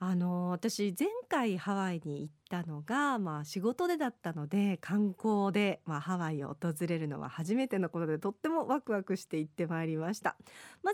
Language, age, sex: Japanese, 40-59, female